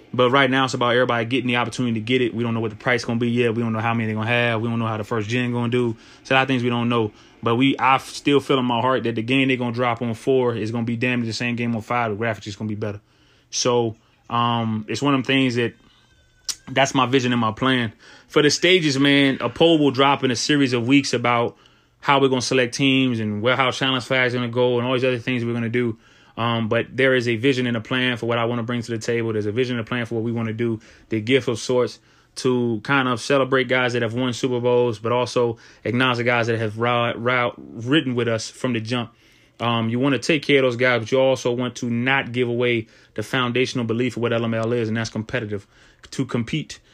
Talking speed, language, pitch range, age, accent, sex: 285 wpm, English, 115-130 Hz, 20-39, American, male